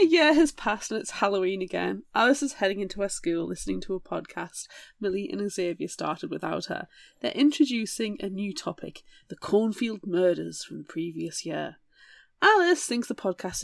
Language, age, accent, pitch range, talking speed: English, 30-49, British, 180-290 Hz, 175 wpm